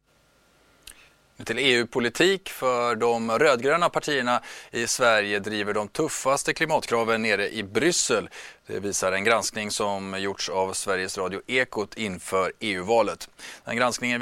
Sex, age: male, 30-49